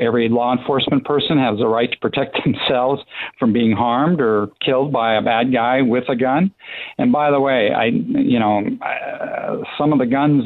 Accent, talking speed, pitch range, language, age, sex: American, 190 wpm, 115-145 Hz, English, 60-79, male